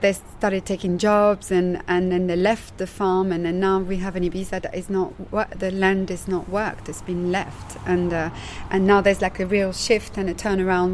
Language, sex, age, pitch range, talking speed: English, female, 30-49, 175-205 Hz, 225 wpm